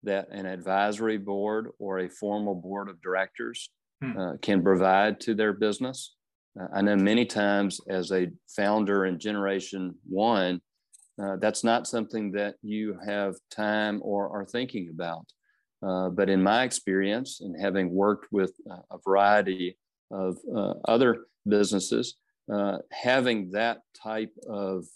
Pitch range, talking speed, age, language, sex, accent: 95-105 Hz, 140 wpm, 40-59, English, male, American